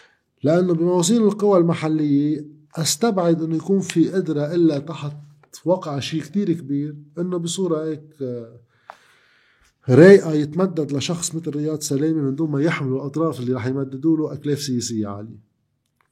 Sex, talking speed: male, 140 wpm